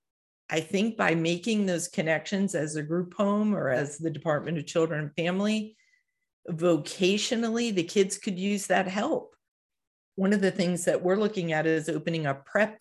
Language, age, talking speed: English, 40-59, 175 wpm